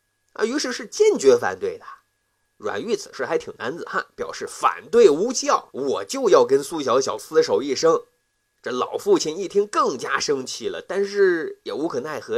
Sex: male